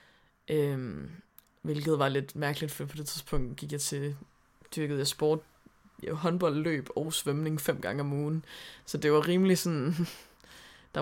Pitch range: 150-180 Hz